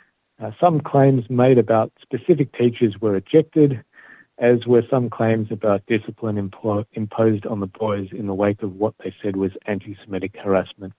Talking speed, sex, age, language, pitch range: 165 wpm, male, 50-69, Hebrew, 110-130 Hz